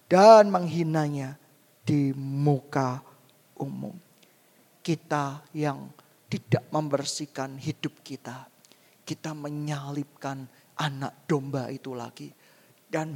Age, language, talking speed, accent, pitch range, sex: 40-59, Indonesian, 80 wpm, native, 135-160 Hz, male